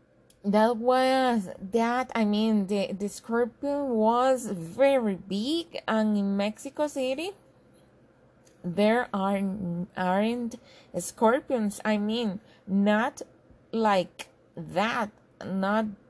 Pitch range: 195-250 Hz